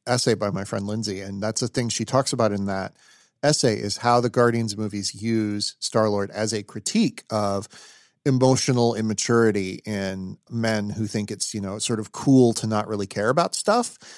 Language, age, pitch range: English, 40-59, 105-130 Hz